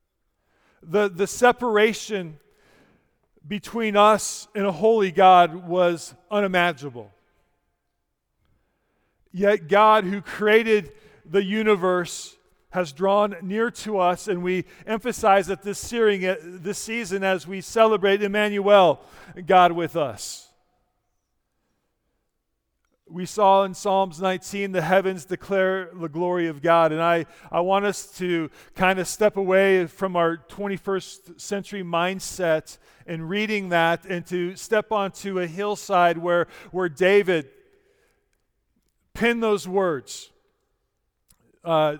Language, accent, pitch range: English, American, 175-210 Hz